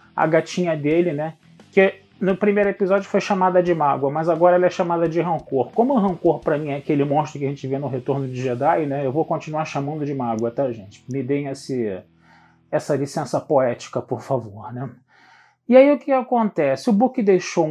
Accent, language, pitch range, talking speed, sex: Brazilian, Portuguese, 140-195 Hz, 205 wpm, male